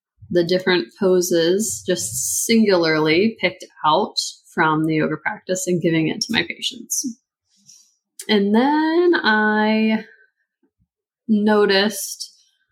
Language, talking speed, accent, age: English, 100 wpm, American, 20-39